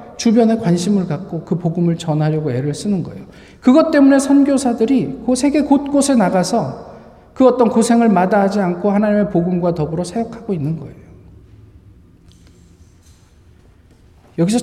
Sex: male